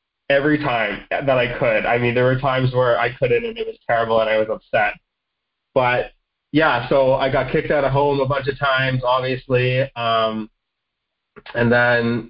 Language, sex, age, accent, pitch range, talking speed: English, male, 20-39, American, 120-140 Hz, 185 wpm